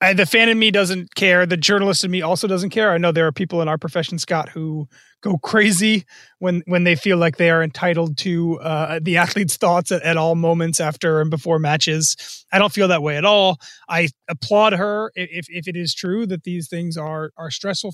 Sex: male